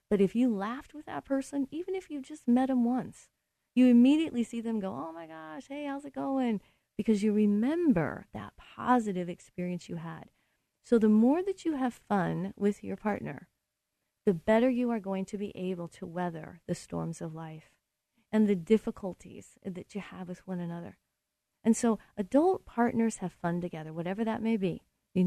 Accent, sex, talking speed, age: American, female, 190 wpm, 40-59